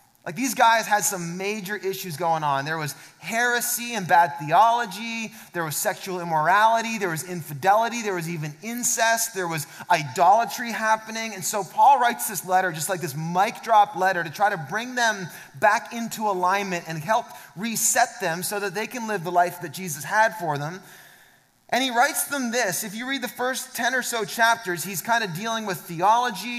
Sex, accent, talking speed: male, American, 195 wpm